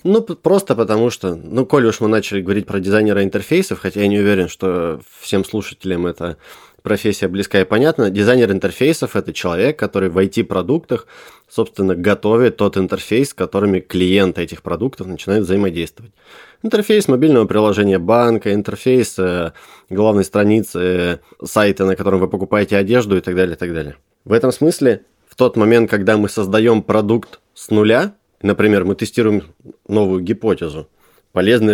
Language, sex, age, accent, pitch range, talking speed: Russian, male, 20-39, native, 95-115 Hz, 155 wpm